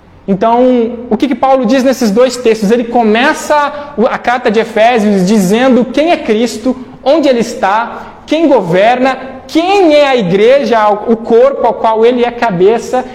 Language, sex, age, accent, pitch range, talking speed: Portuguese, male, 20-39, Brazilian, 190-240 Hz, 165 wpm